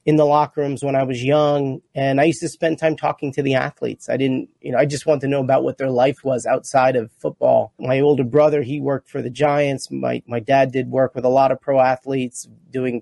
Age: 30-49